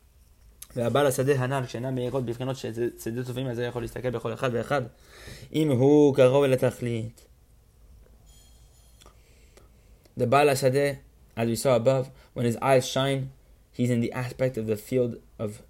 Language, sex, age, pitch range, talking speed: English, male, 20-39, 115-130 Hz, 70 wpm